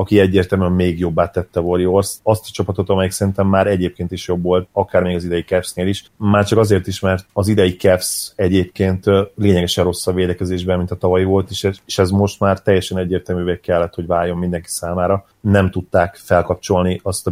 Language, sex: Hungarian, male